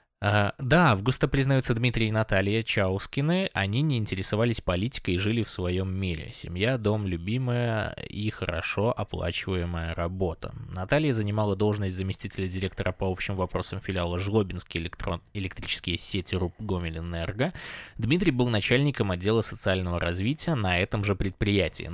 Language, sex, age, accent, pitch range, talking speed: Russian, male, 20-39, native, 95-120 Hz, 130 wpm